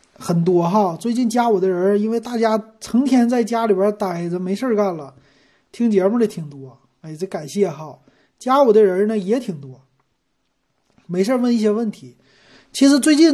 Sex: male